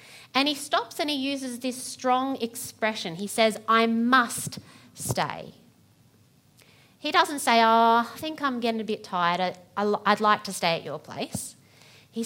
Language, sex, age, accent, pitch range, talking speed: English, female, 30-49, Australian, 145-225 Hz, 160 wpm